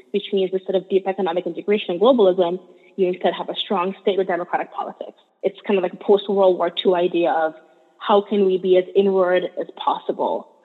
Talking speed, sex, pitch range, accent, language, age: 210 wpm, female, 180-205 Hz, American, English, 20-39